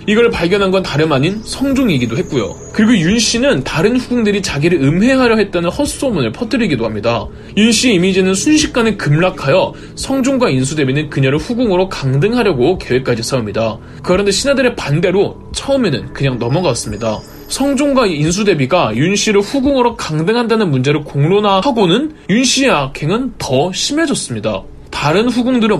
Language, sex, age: Korean, male, 20-39